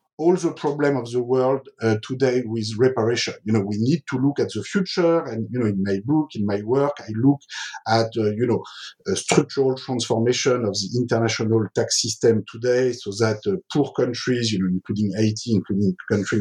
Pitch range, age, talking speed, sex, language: 115-155 Hz, 50-69, 200 wpm, male, English